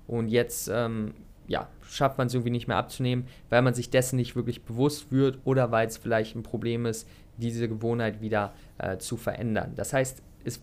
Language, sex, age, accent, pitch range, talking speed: German, male, 20-39, German, 115-145 Hz, 190 wpm